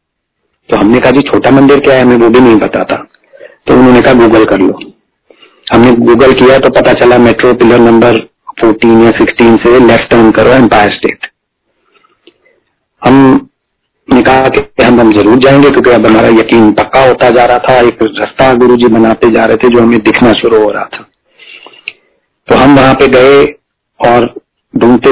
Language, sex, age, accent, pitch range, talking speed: Hindi, male, 40-59, native, 115-130 Hz, 80 wpm